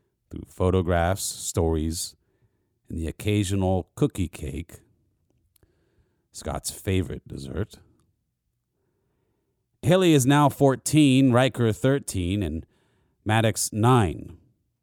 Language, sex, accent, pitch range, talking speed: English, male, American, 90-130 Hz, 80 wpm